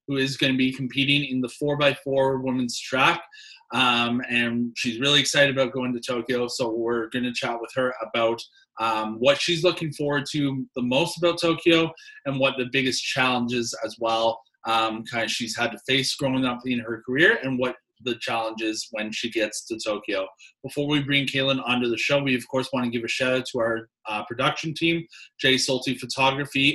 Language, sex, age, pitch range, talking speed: English, male, 20-39, 120-145 Hz, 200 wpm